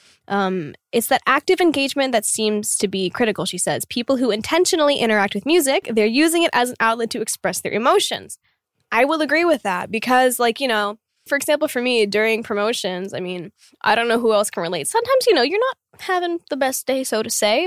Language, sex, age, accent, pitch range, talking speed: English, female, 10-29, American, 190-255 Hz, 215 wpm